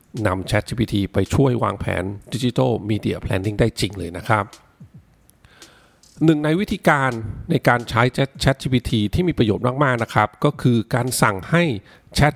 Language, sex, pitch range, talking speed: English, male, 110-140 Hz, 55 wpm